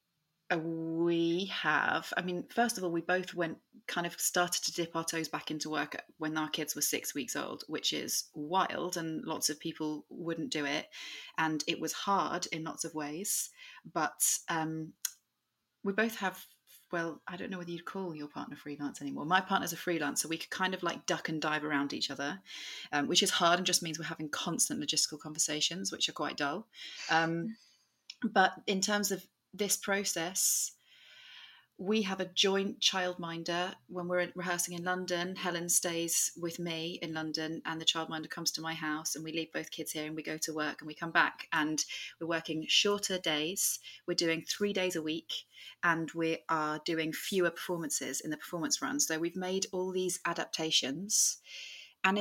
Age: 30-49